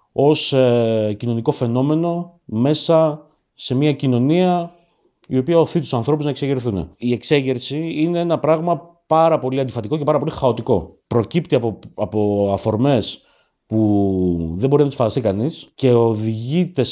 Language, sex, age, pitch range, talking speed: Greek, male, 30-49, 105-155 Hz, 140 wpm